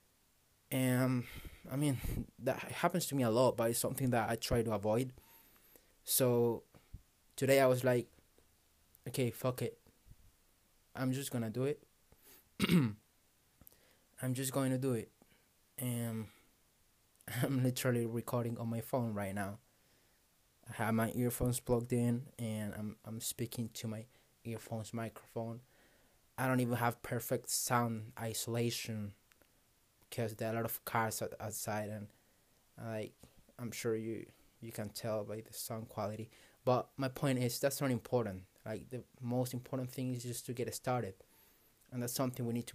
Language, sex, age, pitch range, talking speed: English, male, 20-39, 110-125 Hz, 155 wpm